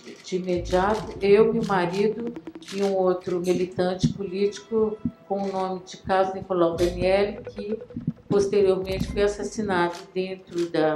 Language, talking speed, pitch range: Portuguese, 125 wpm, 175-225 Hz